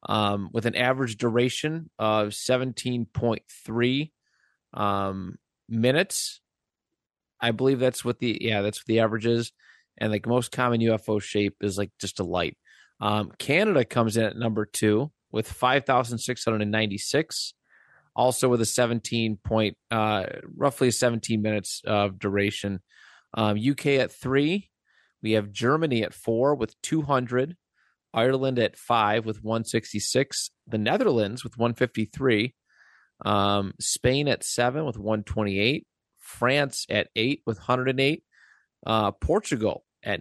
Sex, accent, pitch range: male, American, 105-125 Hz